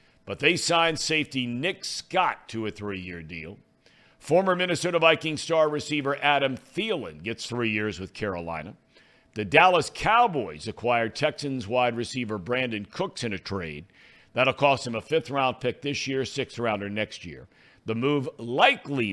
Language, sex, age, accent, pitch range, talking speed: English, male, 60-79, American, 110-160 Hz, 150 wpm